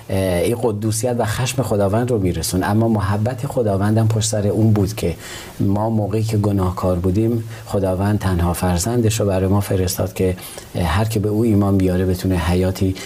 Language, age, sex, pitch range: Persian, 40-59, male, 95-120 Hz